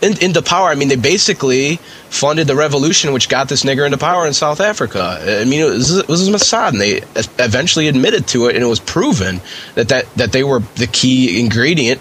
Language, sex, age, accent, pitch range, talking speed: English, male, 20-39, American, 105-155 Hz, 210 wpm